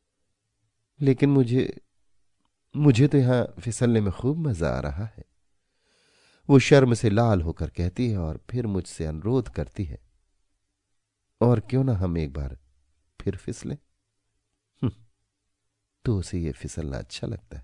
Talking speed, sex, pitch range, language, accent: 135 wpm, male, 80-115 Hz, Hindi, native